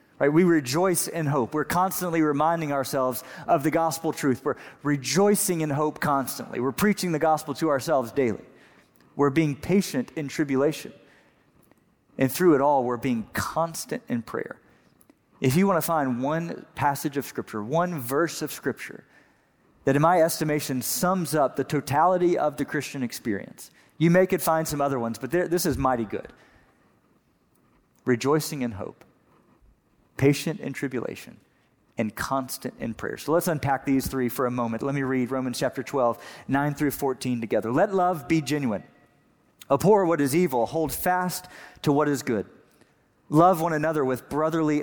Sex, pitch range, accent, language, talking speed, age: male, 135-170 Hz, American, English, 165 wpm, 40-59